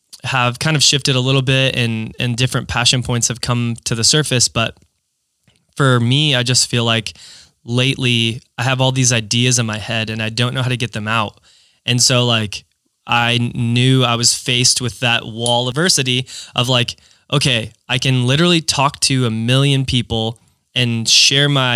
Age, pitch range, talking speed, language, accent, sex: 20-39, 115-135 Hz, 190 wpm, English, American, male